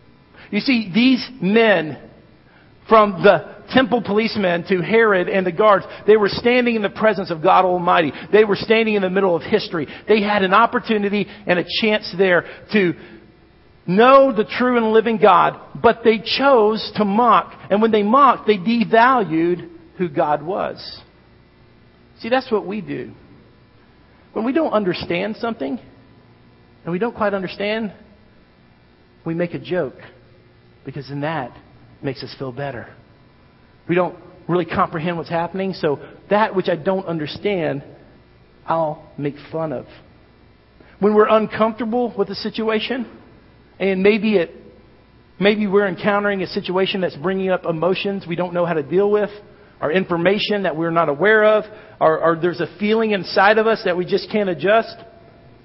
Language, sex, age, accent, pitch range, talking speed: English, male, 50-69, American, 170-215 Hz, 155 wpm